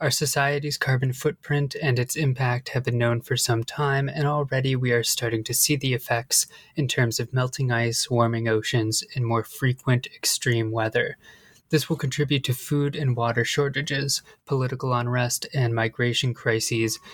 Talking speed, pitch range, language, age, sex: 165 wpm, 120-140 Hz, English, 20-39, male